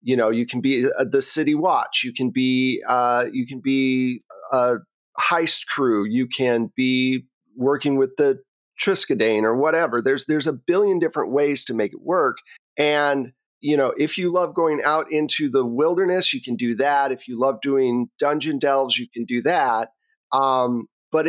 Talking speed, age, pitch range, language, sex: 185 wpm, 40-59, 125-155 Hz, English, male